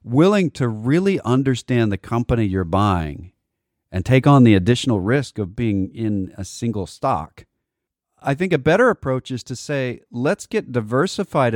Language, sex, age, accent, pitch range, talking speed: English, male, 40-59, American, 100-130 Hz, 160 wpm